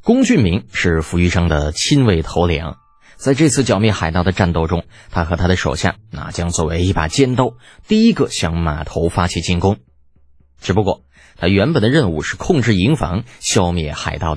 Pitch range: 85-130 Hz